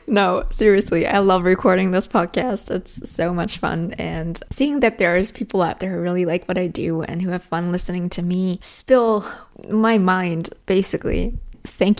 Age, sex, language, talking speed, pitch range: 20-39, female, English, 180 wpm, 175-210 Hz